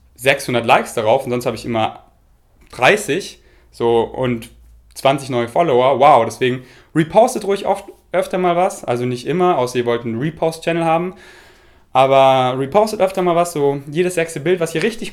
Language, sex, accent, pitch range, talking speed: German, male, German, 125-170 Hz, 170 wpm